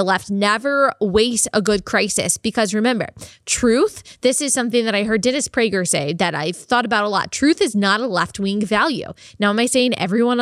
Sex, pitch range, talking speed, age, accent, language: female, 205-250 Hz, 215 wpm, 10-29, American, English